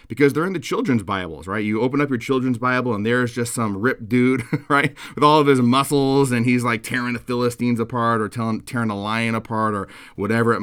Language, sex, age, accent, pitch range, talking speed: English, male, 30-49, American, 95-125 Hz, 230 wpm